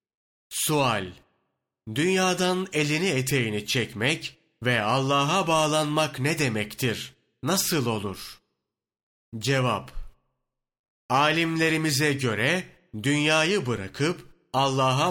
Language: Turkish